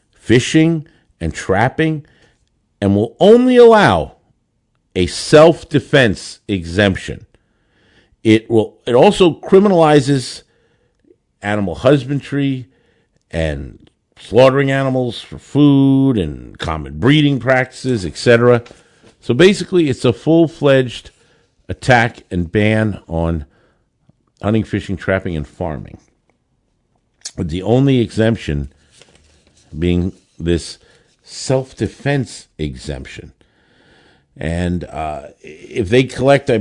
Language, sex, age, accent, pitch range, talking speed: English, male, 50-69, American, 90-135 Hz, 90 wpm